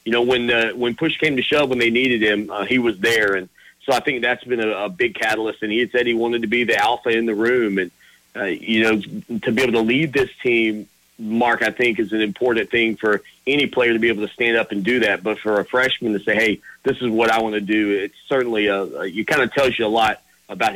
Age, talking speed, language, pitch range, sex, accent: 40-59, 280 wpm, English, 105-125 Hz, male, American